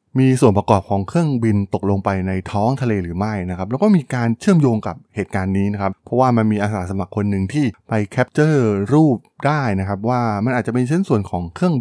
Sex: male